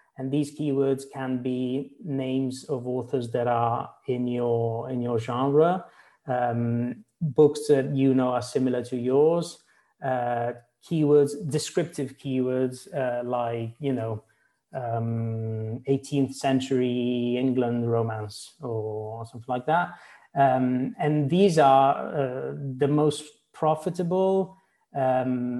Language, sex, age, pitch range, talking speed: English, male, 30-49, 125-145 Hz, 115 wpm